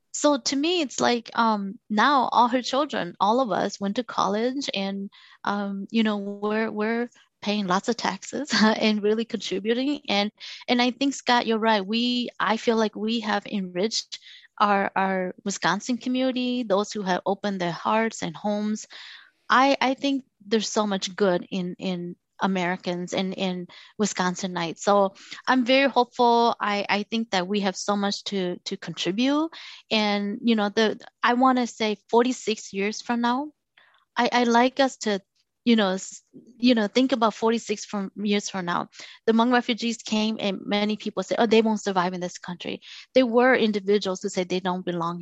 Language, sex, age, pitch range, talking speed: English, female, 30-49, 195-240 Hz, 180 wpm